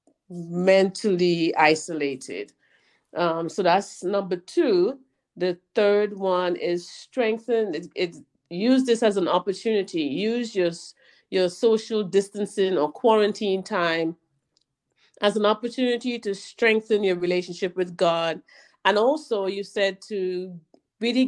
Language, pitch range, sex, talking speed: English, 170-210 Hz, female, 115 wpm